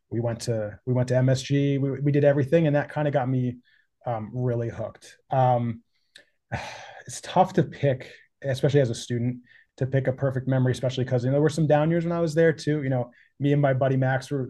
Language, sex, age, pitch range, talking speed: English, male, 30-49, 125-150 Hz, 230 wpm